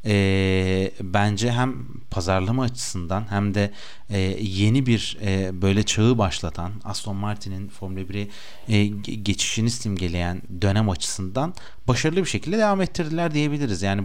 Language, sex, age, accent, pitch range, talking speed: Turkish, male, 40-59, native, 100-130 Hz, 130 wpm